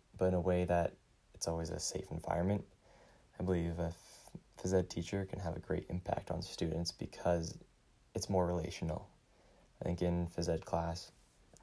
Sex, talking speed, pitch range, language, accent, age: male, 170 wpm, 85-90 Hz, English, American, 20-39